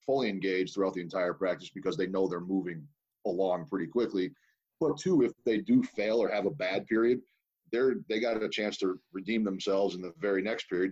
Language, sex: English, male